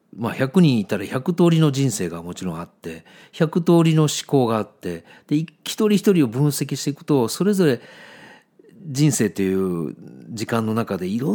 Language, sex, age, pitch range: Japanese, male, 50-69, 105-165 Hz